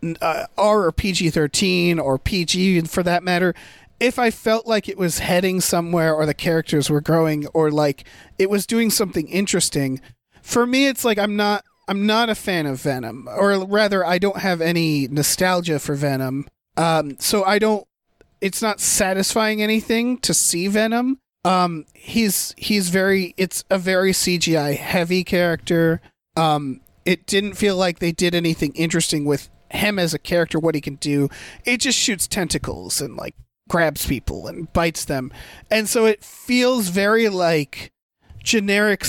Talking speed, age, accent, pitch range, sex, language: 165 wpm, 40-59, American, 150-200 Hz, male, English